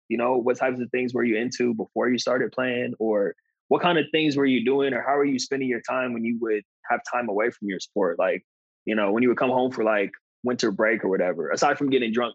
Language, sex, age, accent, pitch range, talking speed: English, male, 20-39, American, 105-125 Hz, 265 wpm